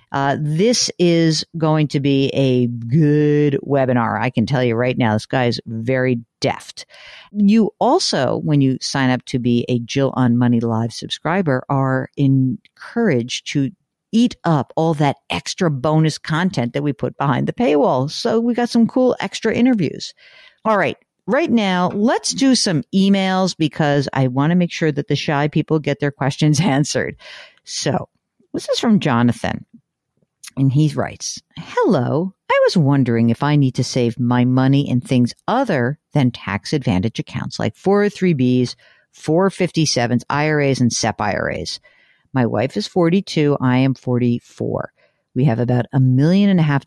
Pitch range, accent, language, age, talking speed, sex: 125-170 Hz, American, English, 50-69, 160 wpm, female